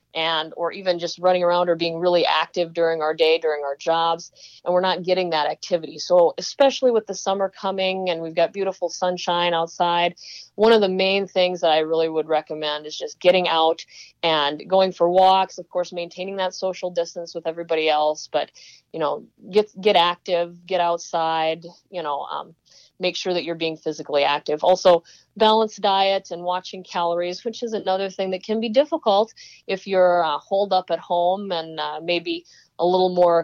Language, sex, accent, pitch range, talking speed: English, female, American, 165-190 Hz, 190 wpm